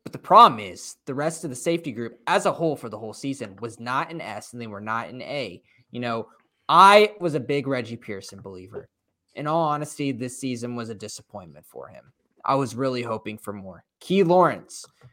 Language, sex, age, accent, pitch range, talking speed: English, male, 20-39, American, 115-150 Hz, 215 wpm